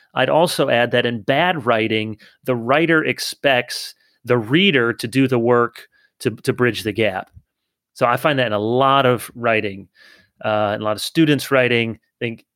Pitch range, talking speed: 115-155 Hz, 175 wpm